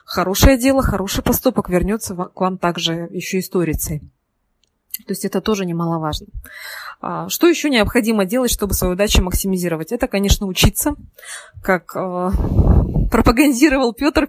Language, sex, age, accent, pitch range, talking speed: Russian, female, 20-39, native, 180-220 Hz, 120 wpm